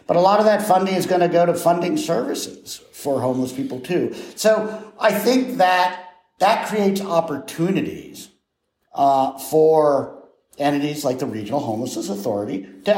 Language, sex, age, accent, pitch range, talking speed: English, male, 50-69, American, 120-170 Hz, 155 wpm